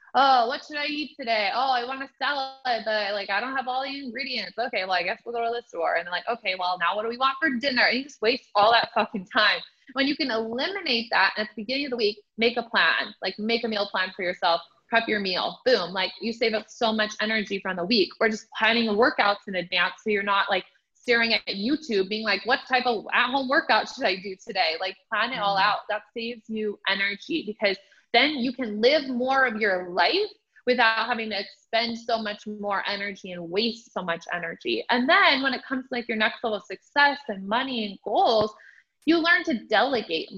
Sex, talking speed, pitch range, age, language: female, 235 wpm, 205-250 Hz, 20-39, English